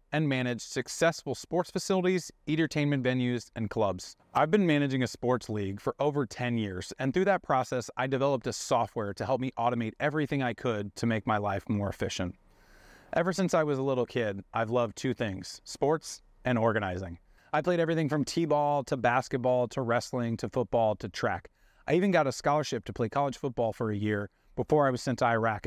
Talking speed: 200 wpm